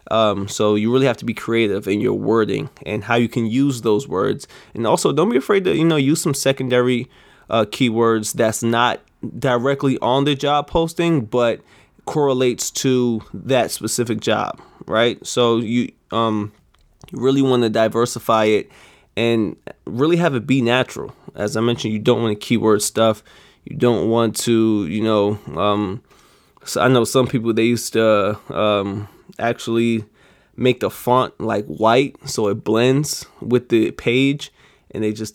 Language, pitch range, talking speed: English, 110-125 Hz, 170 wpm